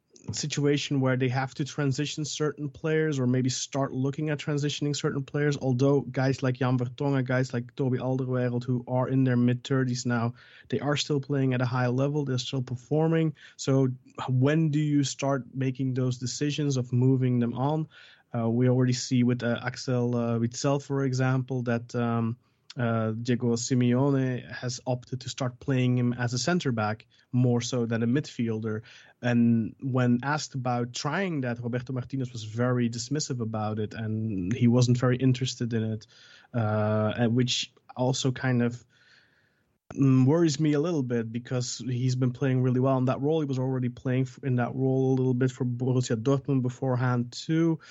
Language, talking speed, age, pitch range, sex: English, 175 wpm, 20-39, 125-140 Hz, male